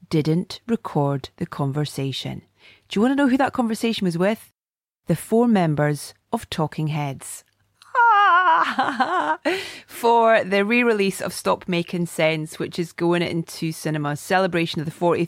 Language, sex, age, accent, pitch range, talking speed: English, female, 30-49, British, 160-190 Hz, 140 wpm